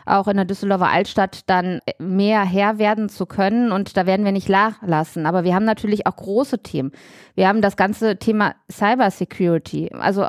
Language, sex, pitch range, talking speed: German, female, 200-240 Hz, 190 wpm